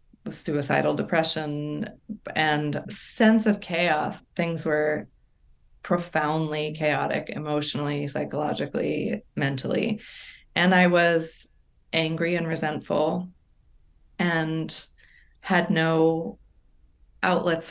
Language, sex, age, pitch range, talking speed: English, female, 20-39, 150-170 Hz, 80 wpm